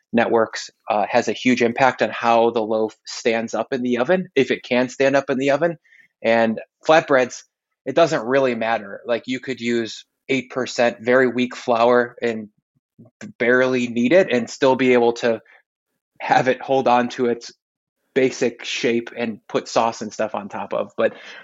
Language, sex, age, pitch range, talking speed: English, male, 20-39, 115-135 Hz, 180 wpm